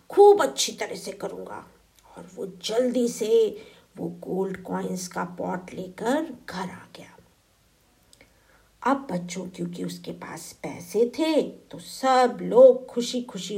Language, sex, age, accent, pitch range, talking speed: Hindi, female, 50-69, native, 185-265 Hz, 135 wpm